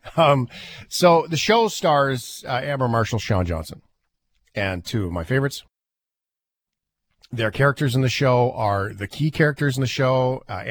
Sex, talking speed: male, 155 wpm